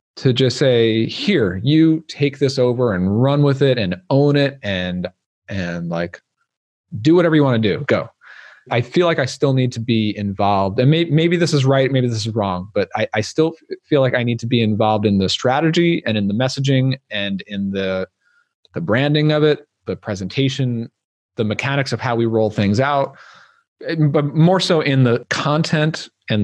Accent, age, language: American, 30-49, English